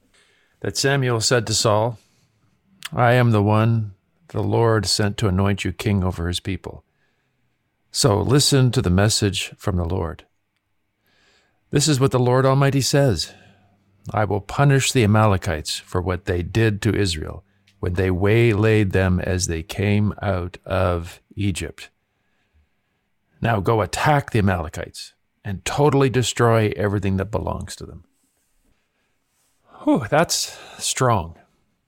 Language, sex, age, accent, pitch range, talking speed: English, male, 50-69, American, 95-115 Hz, 130 wpm